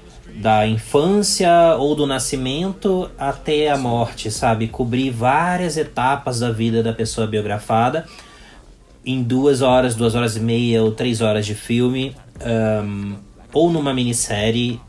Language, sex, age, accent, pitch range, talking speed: Portuguese, male, 20-39, Brazilian, 110-150 Hz, 135 wpm